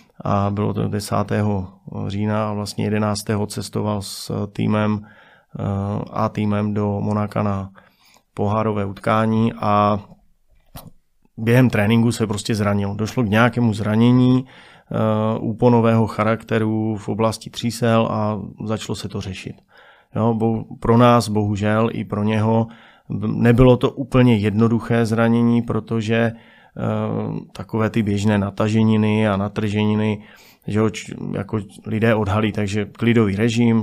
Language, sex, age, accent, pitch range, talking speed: Czech, male, 30-49, native, 105-115 Hz, 115 wpm